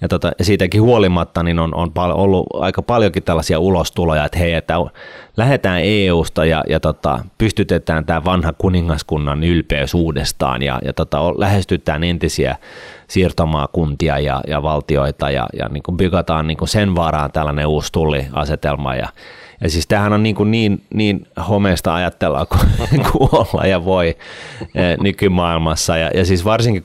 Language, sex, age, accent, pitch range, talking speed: Finnish, male, 30-49, native, 75-95 Hz, 150 wpm